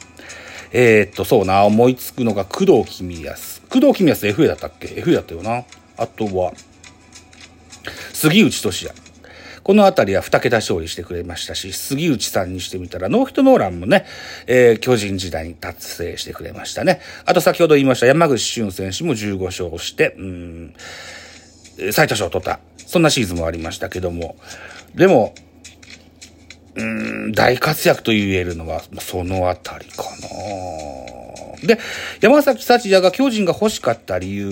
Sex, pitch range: male, 90-130 Hz